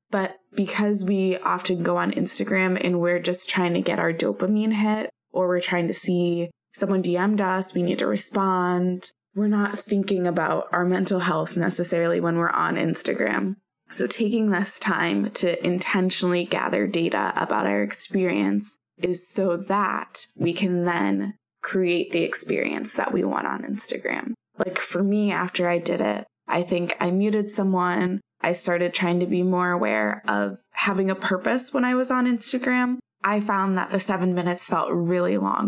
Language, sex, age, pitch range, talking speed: English, female, 20-39, 175-200 Hz, 170 wpm